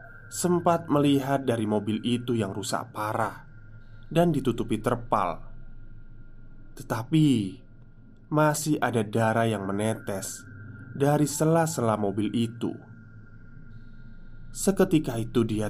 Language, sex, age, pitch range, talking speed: Indonesian, male, 20-39, 110-130 Hz, 90 wpm